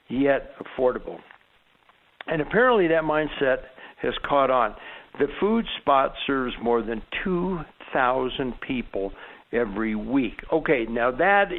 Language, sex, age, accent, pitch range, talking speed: English, male, 60-79, American, 130-175 Hz, 115 wpm